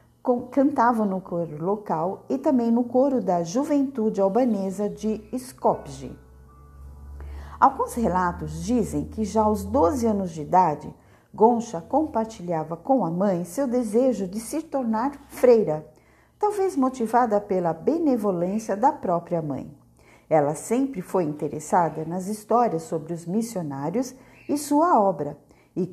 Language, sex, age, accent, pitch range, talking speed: Portuguese, female, 40-59, Brazilian, 170-250 Hz, 125 wpm